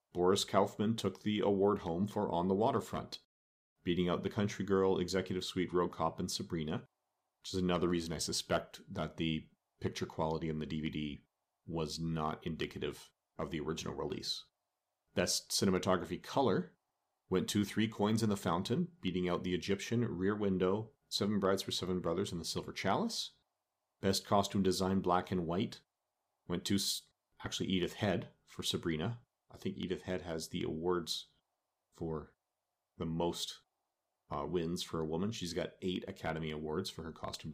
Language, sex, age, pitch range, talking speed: English, male, 40-59, 85-100 Hz, 165 wpm